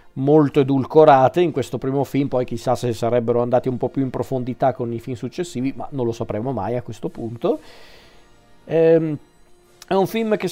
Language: Italian